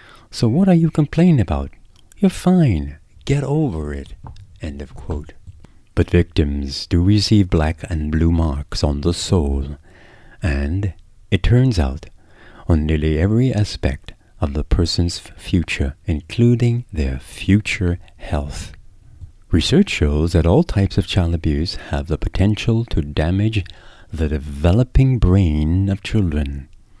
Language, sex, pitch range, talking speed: English, male, 80-110 Hz, 130 wpm